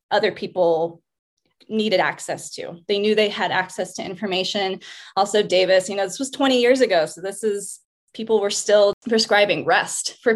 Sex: female